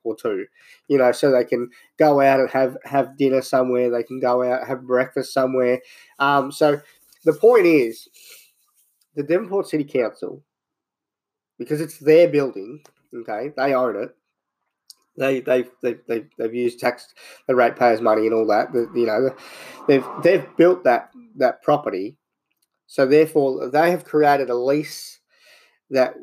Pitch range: 130-170 Hz